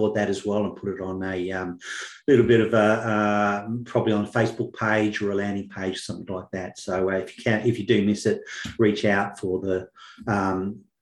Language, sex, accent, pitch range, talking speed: English, male, Australian, 110-130 Hz, 225 wpm